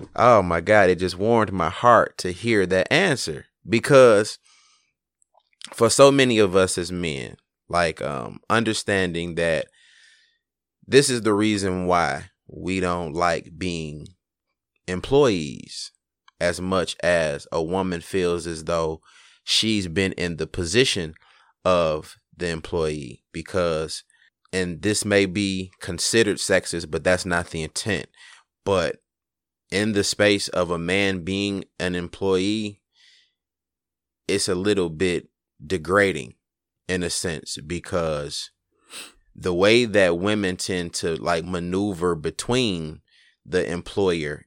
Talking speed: 125 wpm